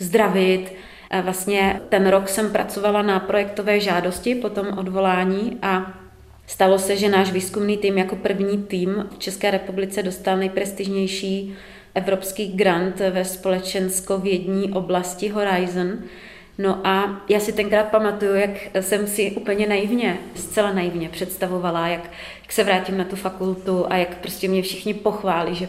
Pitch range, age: 185-210 Hz, 30-49